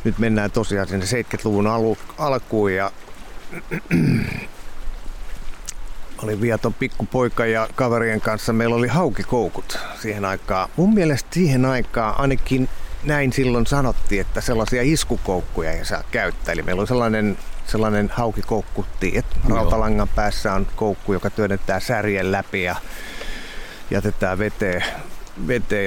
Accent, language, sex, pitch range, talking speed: native, Finnish, male, 95-115 Hz, 120 wpm